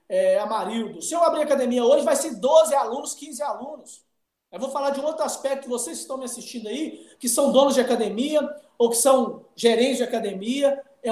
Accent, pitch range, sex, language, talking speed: Brazilian, 235-295 Hz, male, Portuguese, 200 wpm